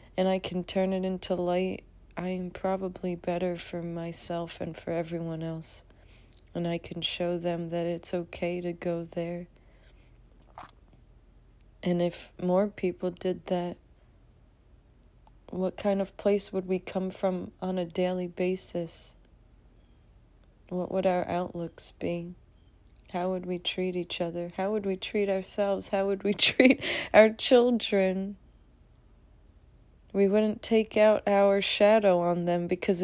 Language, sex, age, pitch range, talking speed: English, female, 30-49, 170-190 Hz, 140 wpm